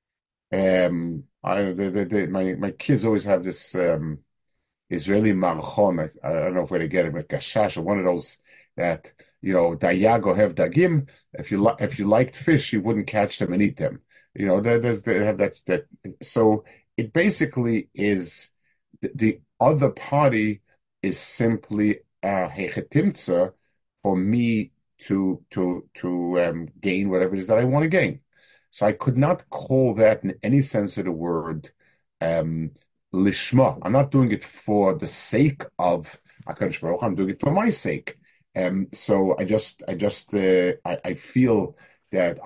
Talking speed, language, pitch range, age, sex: 170 wpm, English, 95-130 Hz, 40-59, male